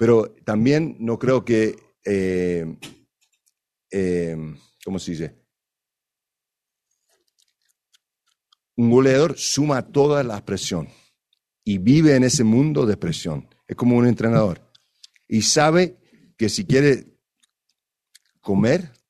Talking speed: 105 wpm